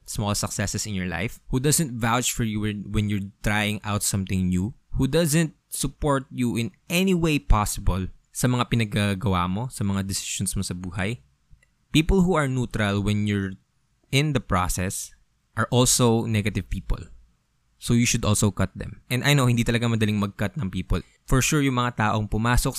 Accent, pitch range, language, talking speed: Filipino, 100-120 Hz, English, 180 wpm